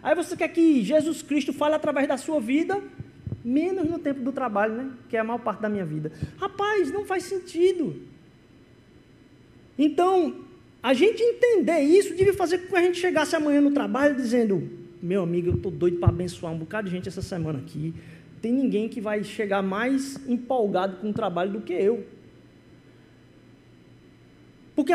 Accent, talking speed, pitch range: Brazilian, 175 wpm, 215-320 Hz